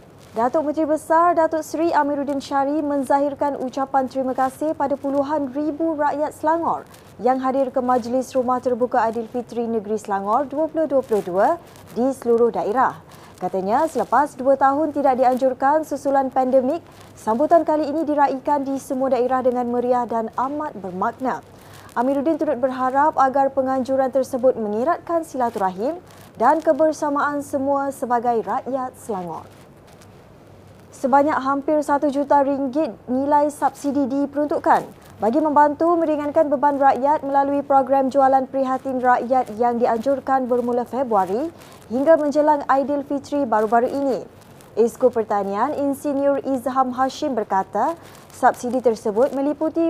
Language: Malay